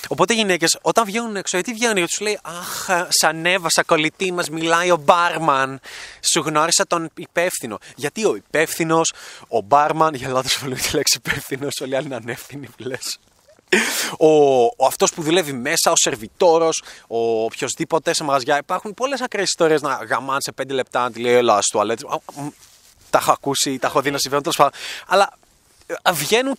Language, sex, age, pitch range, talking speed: Greek, male, 20-39, 135-175 Hz, 165 wpm